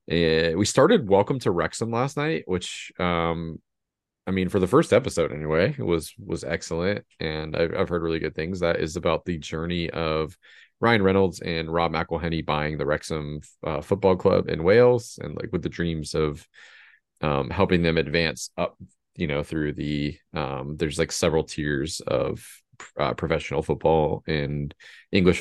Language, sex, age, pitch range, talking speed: English, male, 30-49, 80-95 Hz, 170 wpm